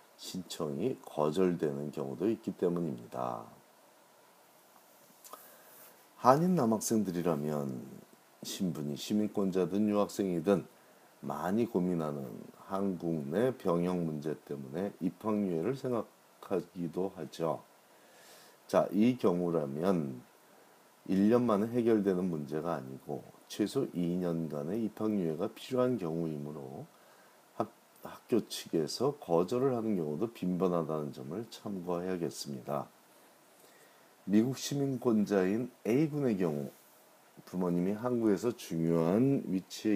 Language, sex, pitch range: Korean, male, 80-105 Hz